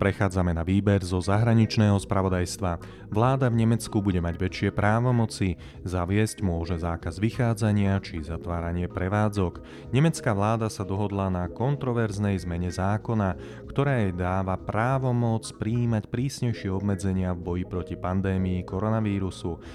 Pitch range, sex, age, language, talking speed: 90-110 Hz, male, 30-49, Slovak, 120 wpm